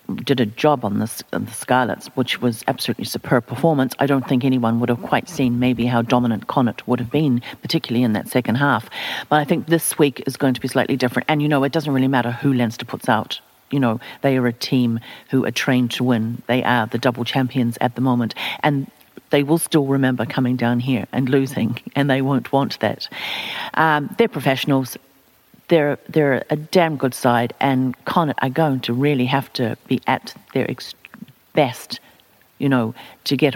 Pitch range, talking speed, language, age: 120-145 Hz, 200 wpm, English, 50-69